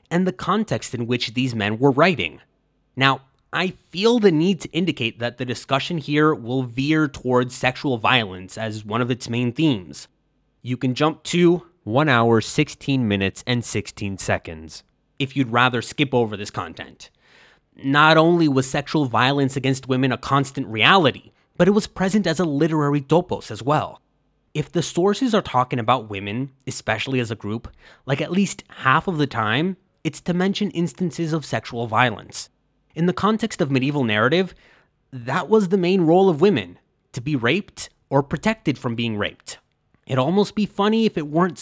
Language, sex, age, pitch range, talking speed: English, male, 20-39, 125-175 Hz, 175 wpm